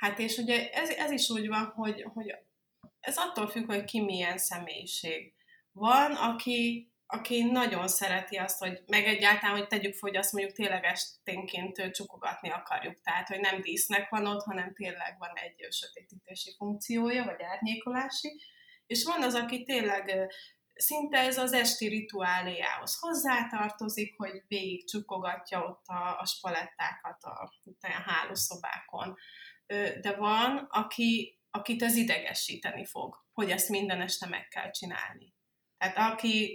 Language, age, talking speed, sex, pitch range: Hungarian, 20-39, 140 wpm, female, 190-235 Hz